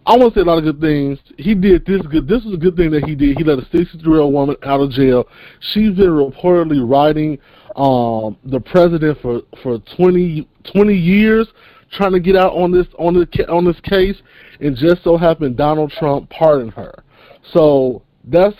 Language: English